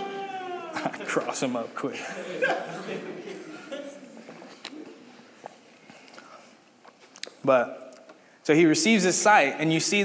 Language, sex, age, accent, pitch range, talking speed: English, male, 20-39, American, 140-220 Hz, 80 wpm